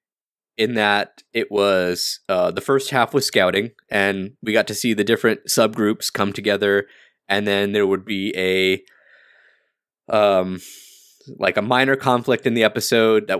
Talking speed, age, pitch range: 155 wpm, 20-39, 100-115 Hz